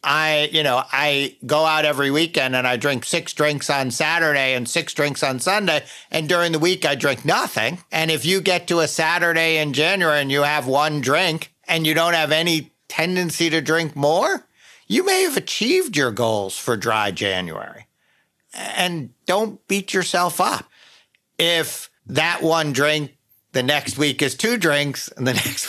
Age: 50-69